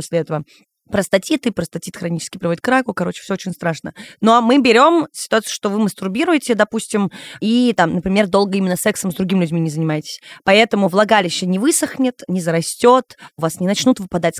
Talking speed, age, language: 190 wpm, 20-39, Russian